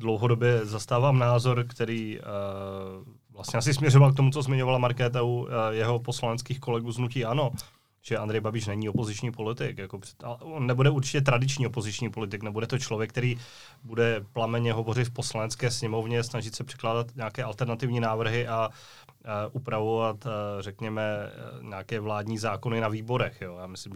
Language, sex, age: Czech, male, 20-39